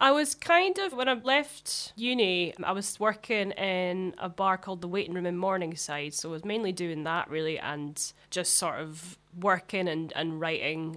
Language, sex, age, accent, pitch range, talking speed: English, female, 20-39, British, 155-185 Hz, 190 wpm